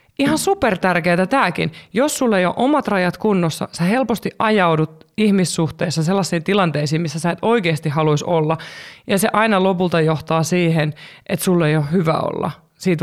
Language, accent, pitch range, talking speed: Finnish, native, 160-205 Hz, 160 wpm